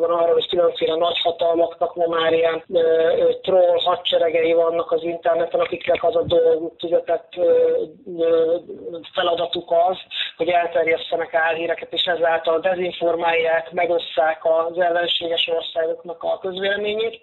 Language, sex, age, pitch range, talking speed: Hungarian, male, 20-39, 170-205 Hz, 125 wpm